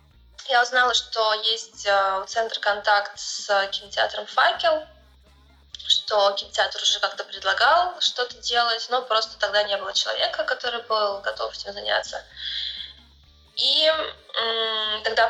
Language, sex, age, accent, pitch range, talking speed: Russian, female, 20-39, native, 195-235 Hz, 115 wpm